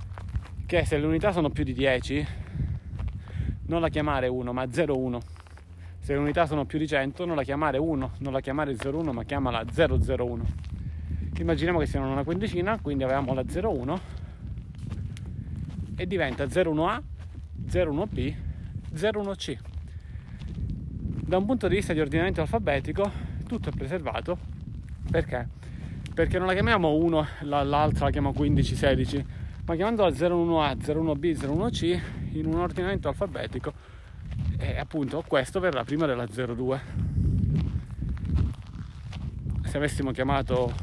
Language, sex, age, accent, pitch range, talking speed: Italian, male, 30-49, native, 100-155 Hz, 130 wpm